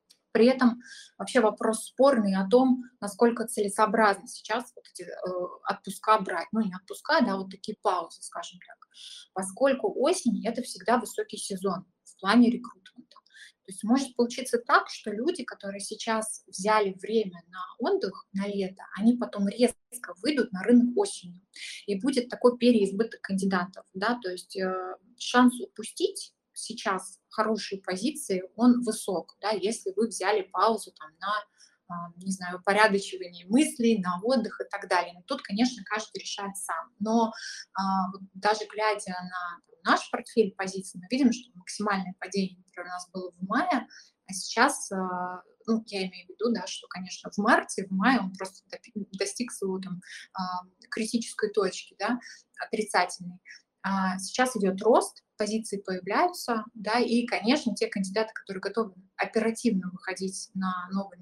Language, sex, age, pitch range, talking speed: Russian, female, 20-39, 190-240 Hz, 145 wpm